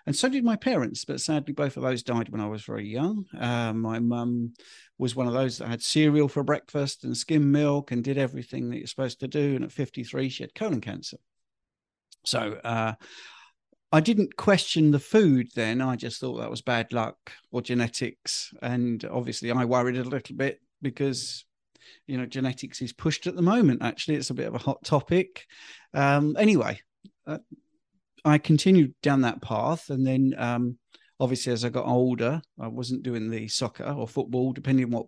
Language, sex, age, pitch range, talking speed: Persian, male, 40-59, 120-150 Hz, 195 wpm